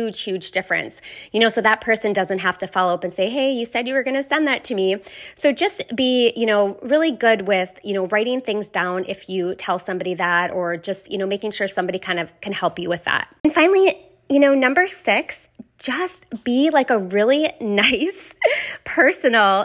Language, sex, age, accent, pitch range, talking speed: English, female, 20-39, American, 195-255 Hz, 215 wpm